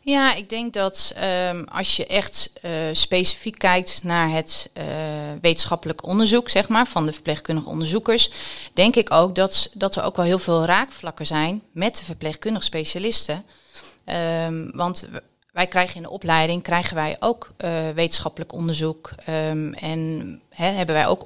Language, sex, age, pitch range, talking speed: Dutch, female, 30-49, 160-185 Hz, 160 wpm